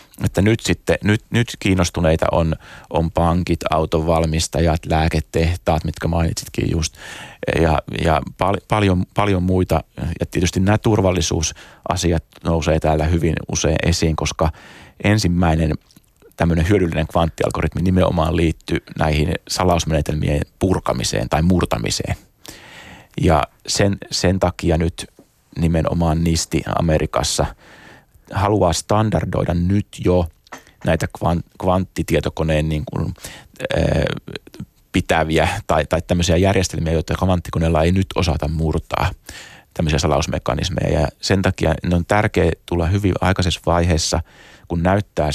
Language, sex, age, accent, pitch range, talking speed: Finnish, male, 30-49, native, 80-95 Hz, 110 wpm